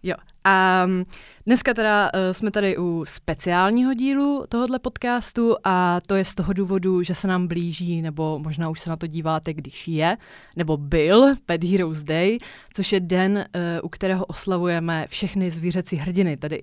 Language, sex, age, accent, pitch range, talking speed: Czech, female, 20-39, native, 160-185 Hz, 160 wpm